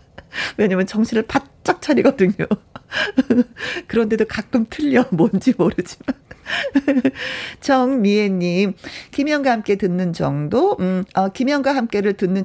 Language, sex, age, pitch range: Korean, female, 40-59, 180-250 Hz